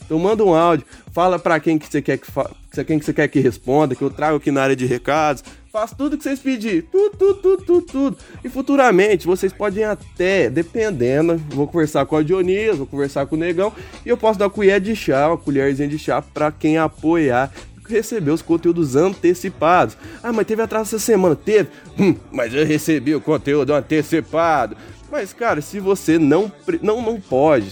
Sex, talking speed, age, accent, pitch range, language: male, 200 wpm, 20-39, Brazilian, 145-210 Hz, Portuguese